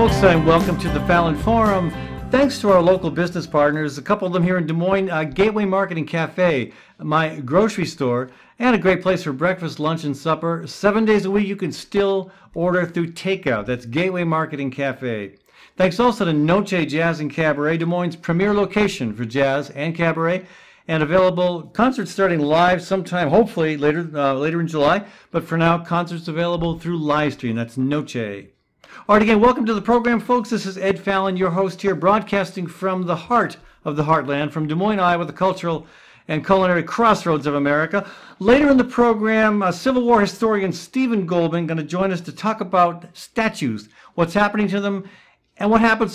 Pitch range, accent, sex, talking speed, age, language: 155-200 Hz, American, male, 190 wpm, 50-69, English